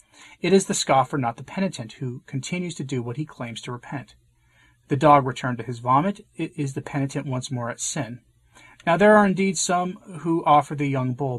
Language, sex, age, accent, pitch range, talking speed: English, male, 30-49, American, 125-155 Hz, 210 wpm